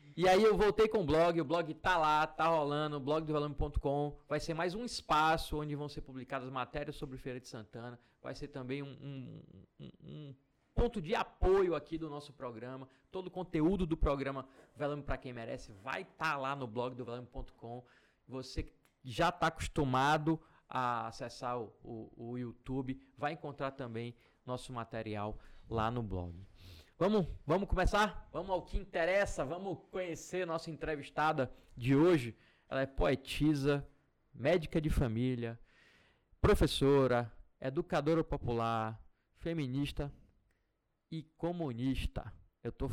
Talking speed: 145 wpm